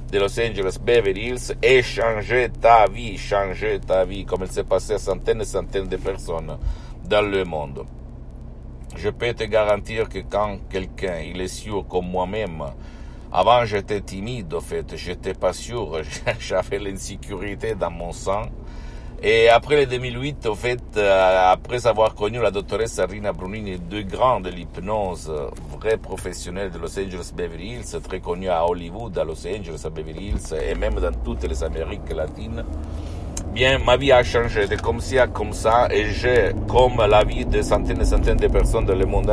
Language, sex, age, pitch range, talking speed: Italian, male, 60-79, 85-110 Hz, 180 wpm